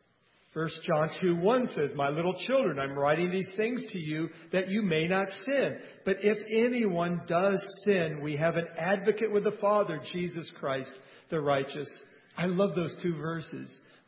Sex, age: male, 50-69